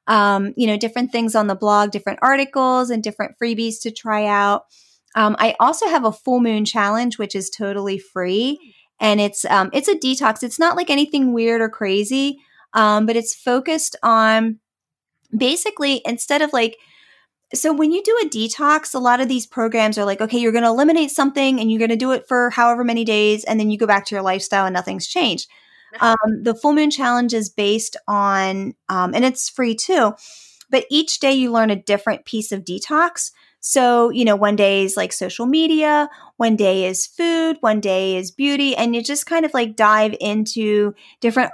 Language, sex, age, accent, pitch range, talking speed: English, female, 30-49, American, 210-265 Hz, 200 wpm